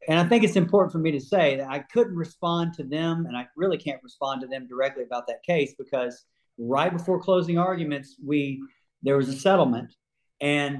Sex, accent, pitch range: male, American, 140-180 Hz